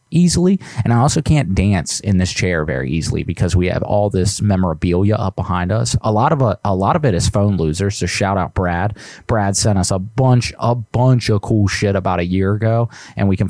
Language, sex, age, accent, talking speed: English, male, 20-39, American, 230 wpm